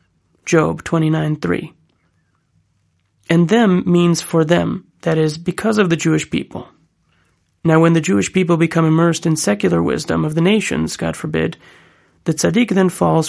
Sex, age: male, 30-49